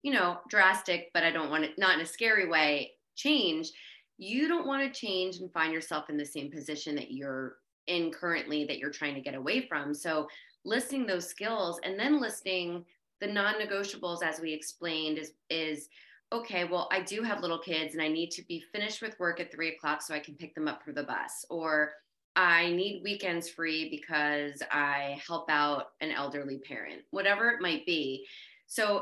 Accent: American